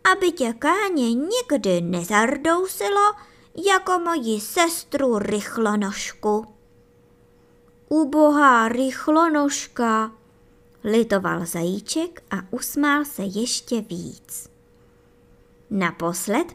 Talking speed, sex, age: 65 wpm, male, 20-39